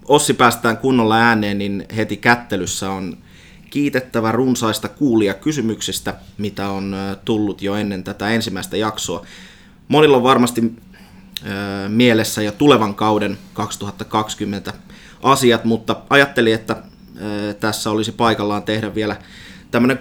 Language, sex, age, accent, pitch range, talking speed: Finnish, male, 30-49, native, 100-115 Hz, 115 wpm